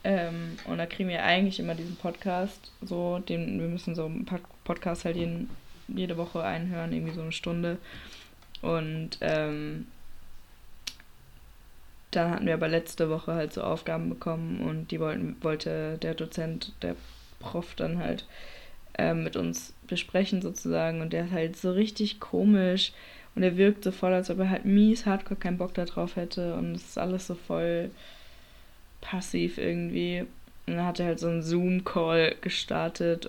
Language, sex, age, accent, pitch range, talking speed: German, female, 20-39, German, 160-195 Hz, 165 wpm